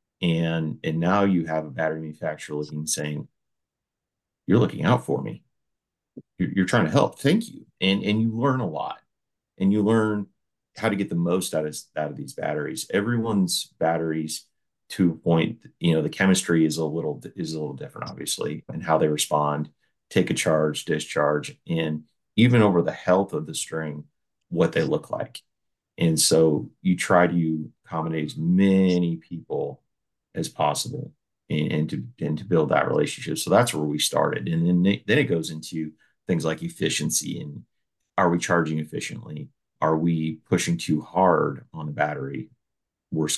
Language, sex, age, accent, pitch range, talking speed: English, male, 40-59, American, 80-90 Hz, 175 wpm